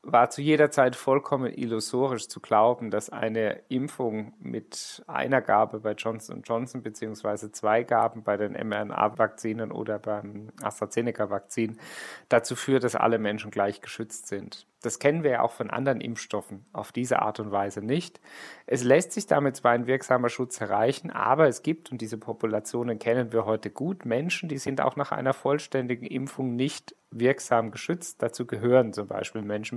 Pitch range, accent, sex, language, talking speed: 110-130 Hz, German, male, German, 165 wpm